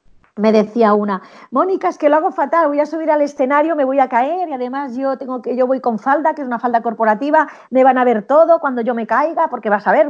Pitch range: 230-290 Hz